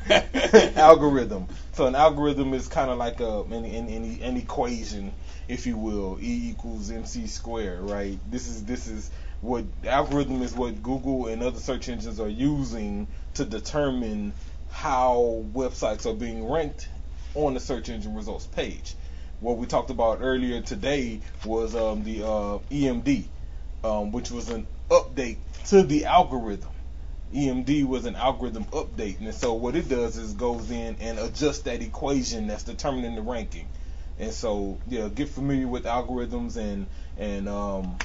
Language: English